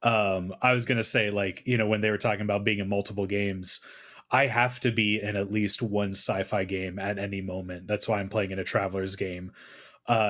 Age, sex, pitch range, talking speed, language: 20-39, male, 95-120 Hz, 225 wpm, English